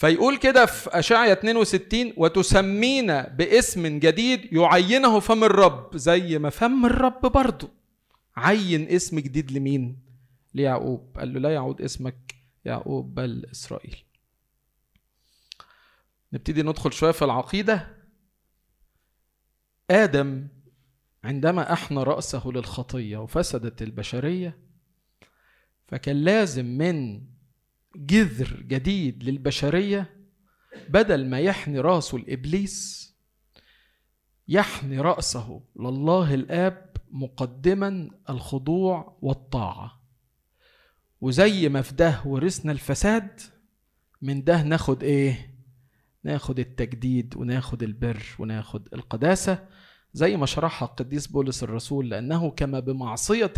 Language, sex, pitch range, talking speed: Arabic, male, 130-185 Hz, 95 wpm